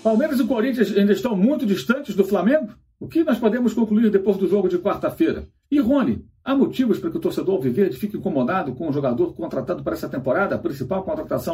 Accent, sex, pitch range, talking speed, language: Brazilian, male, 145-220 Hz, 210 wpm, Portuguese